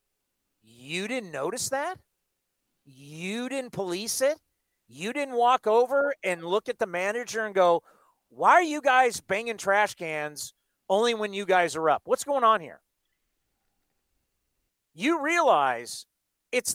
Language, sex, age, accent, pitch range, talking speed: English, male, 40-59, American, 175-245 Hz, 140 wpm